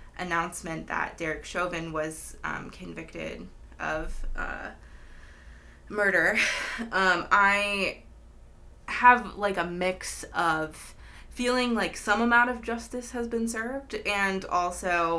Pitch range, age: 160-210 Hz, 20-39